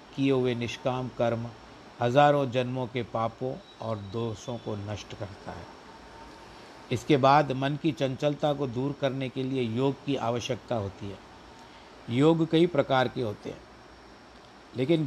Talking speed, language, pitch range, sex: 145 wpm, Hindi, 115-145 Hz, male